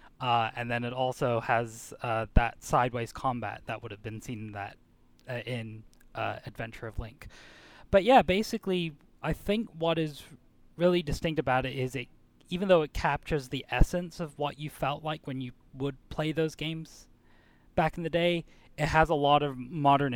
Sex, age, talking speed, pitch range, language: male, 10-29, 190 wpm, 115-145 Hz, English